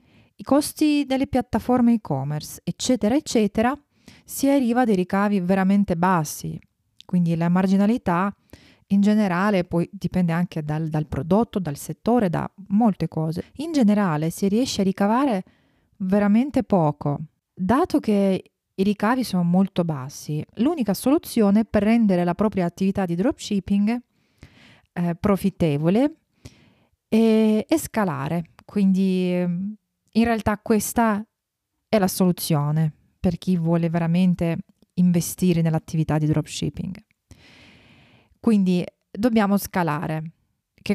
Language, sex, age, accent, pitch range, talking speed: Italian, female, 30-49, native, 170-220 Hz, 115 wpm